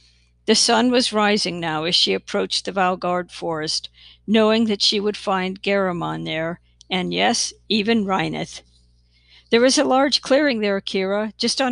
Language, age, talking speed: English, 60-79, 160 wpm